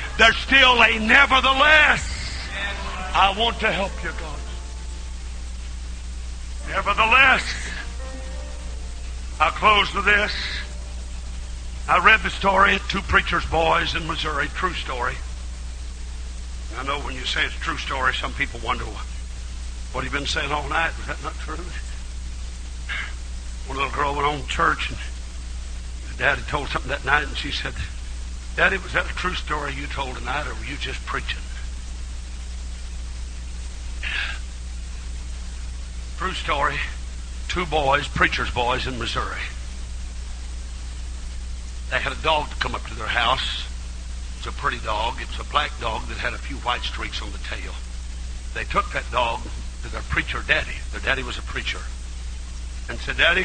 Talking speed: 145 wpm